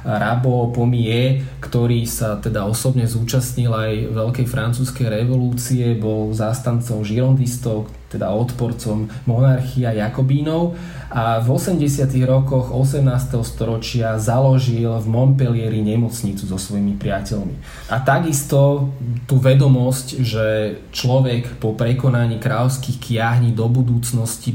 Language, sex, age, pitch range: Slovak, male, 20-39, 110-130 Hz